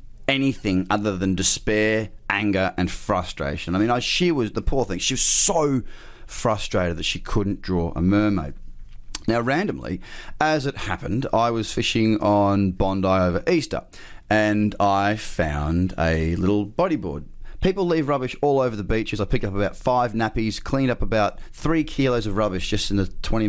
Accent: Australian